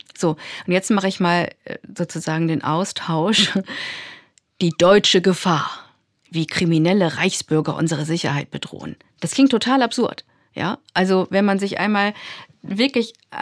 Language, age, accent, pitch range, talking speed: German, 40-59, German, 175-220 Hz, 125 wpm